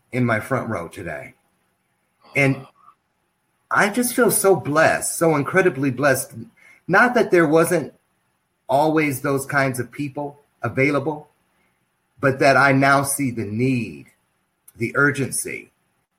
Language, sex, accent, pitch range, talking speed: English, male, American, 120-150 Hz, 120 wpm